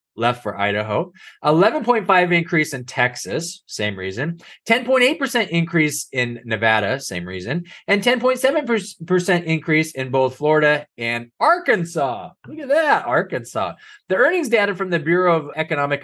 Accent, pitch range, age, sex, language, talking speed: American, 125-170 Hz, 20-39, male, English, 130 wpm